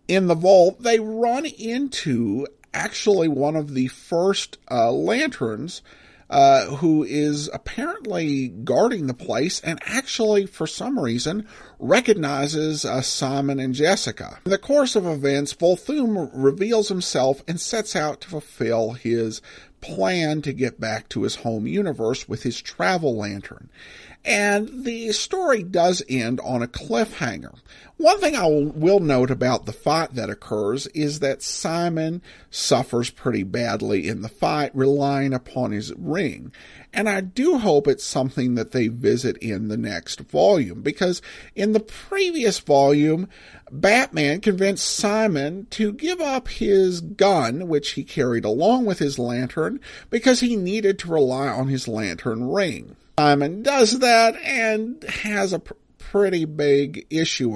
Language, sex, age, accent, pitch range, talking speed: English, male, 50-69, American, 130-210 Hz, 145 wpm